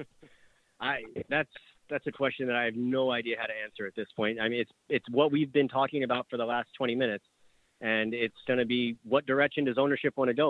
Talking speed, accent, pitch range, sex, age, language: 230 wpm, American, 120-135 Hz, male, 30-49, English